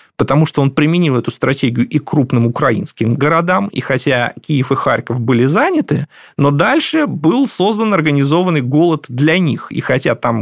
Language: Russian